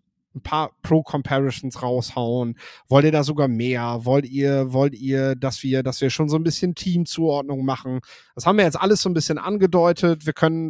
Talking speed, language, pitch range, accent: 190 wpm, German, 135-170 Hz, German